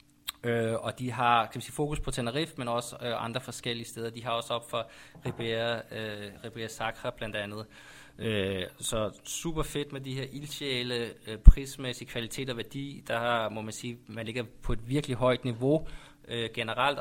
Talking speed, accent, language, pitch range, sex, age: 180 wpm, native, Danish, 110-130 Hz, male, 20-39